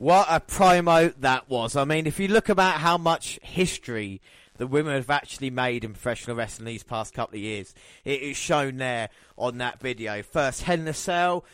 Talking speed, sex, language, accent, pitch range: 195 wpm, male, English, British, 130-165 Hz